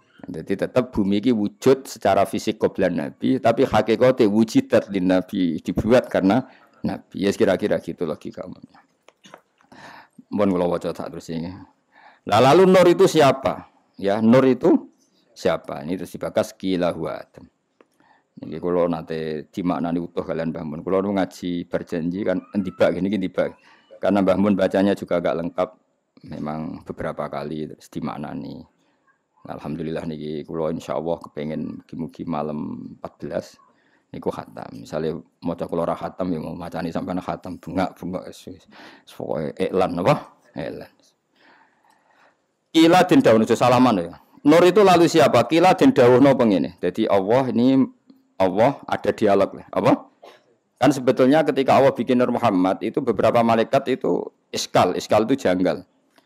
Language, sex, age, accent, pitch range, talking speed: Indonesian, male, 50-69, native, 85-130 Hz, 130 wpm